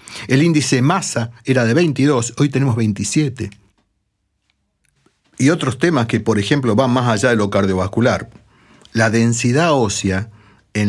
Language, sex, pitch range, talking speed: Spanish, male, 105-140 Hz, 140 wpm